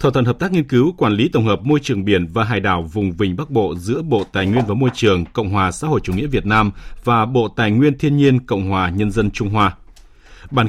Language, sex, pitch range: Vietnamese, male, 100-130 Hz